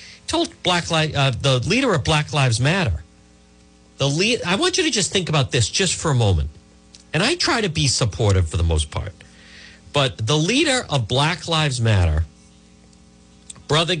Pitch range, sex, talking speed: 105-170 Hz, male, 175 wpm